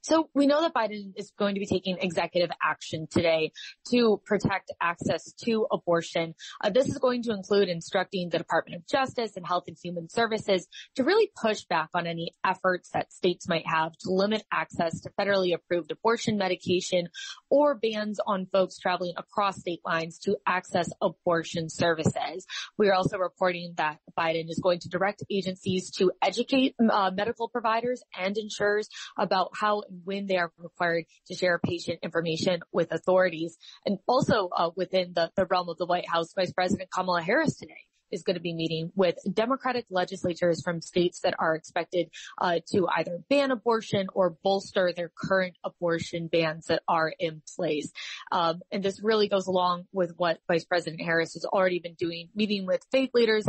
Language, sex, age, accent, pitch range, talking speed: English, female, 20-39, American, 170-205 Hz, 180 wpm